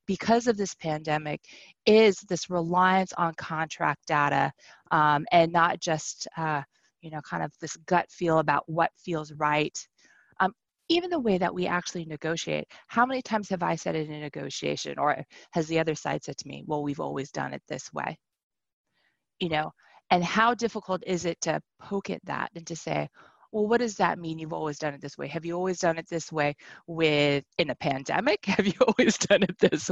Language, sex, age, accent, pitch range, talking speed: English, female, 20-39, American, 150-180 Hz, 200 wpm